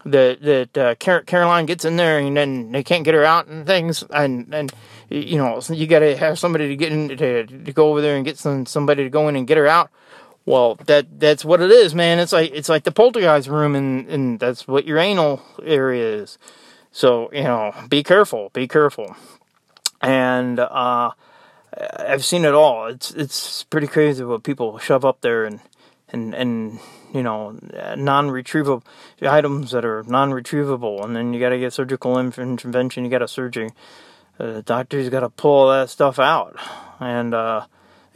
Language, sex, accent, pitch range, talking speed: English, male, American, 125-155 Hz, 190 wpm